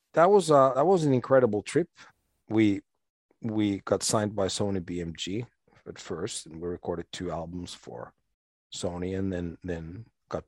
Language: English